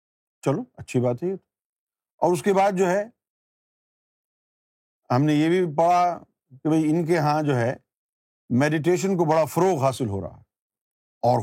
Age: 50-69